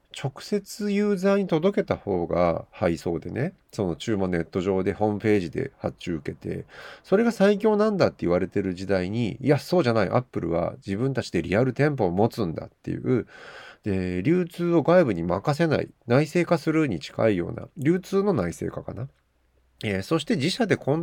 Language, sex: Japanese, male